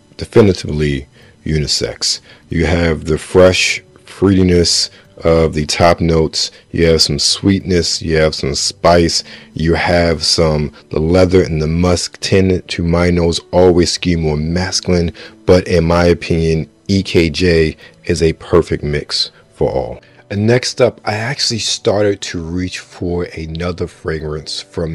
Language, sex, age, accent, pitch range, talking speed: English, male, 40-59, American, 80-100 Hz, 140 wpm